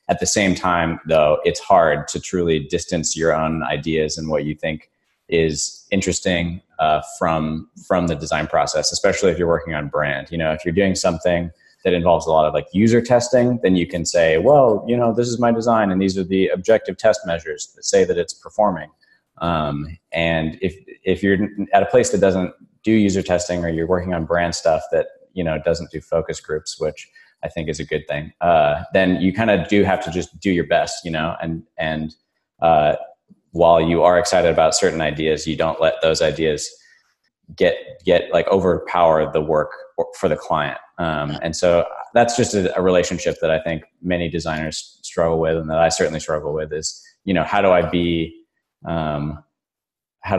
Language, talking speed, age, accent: English, 200 wpm, 30-49, American